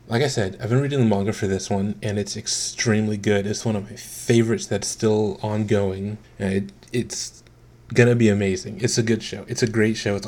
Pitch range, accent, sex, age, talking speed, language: 100-120 Hz, American, male, 20-39, 210 wpm, English